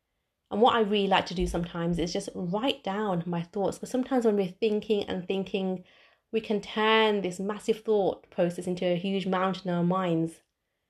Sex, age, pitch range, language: female, 30-49, 175-220 Hz, English